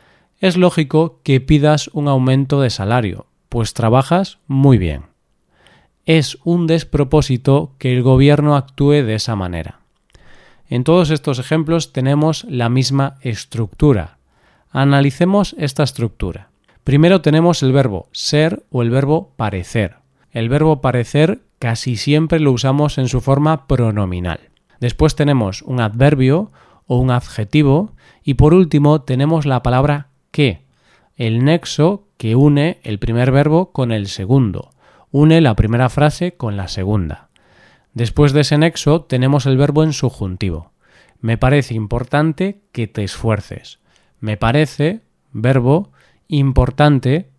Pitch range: 120-150 Hz